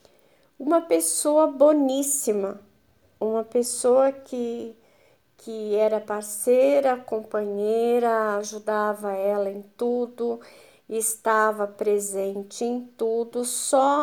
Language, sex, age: Portuguese, female, 50-69